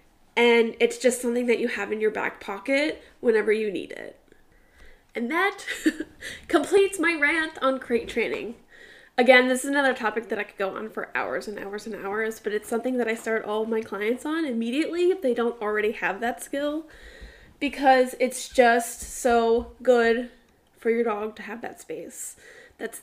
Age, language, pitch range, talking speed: 10-29, English, 230-310 Hz, 185 wpm